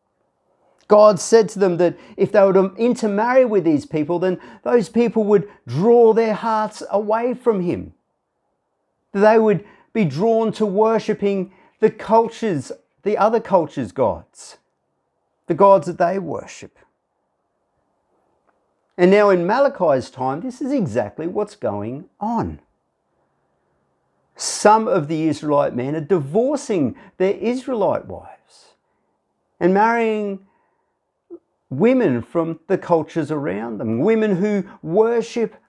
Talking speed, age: 120 wpm, 50-69